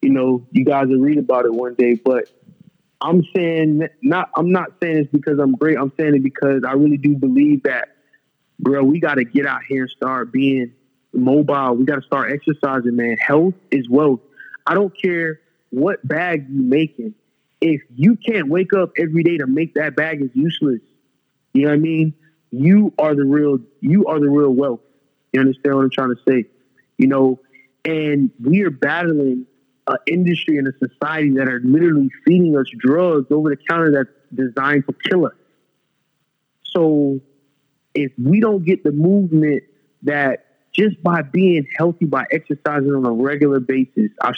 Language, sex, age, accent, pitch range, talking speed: English, male, 20-39, American, 135-160 Hz, 180 wpm